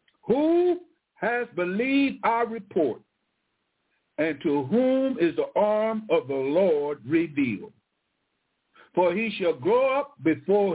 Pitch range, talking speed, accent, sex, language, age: 170-230 Hz, 115 wpm, American, male, English, 60-79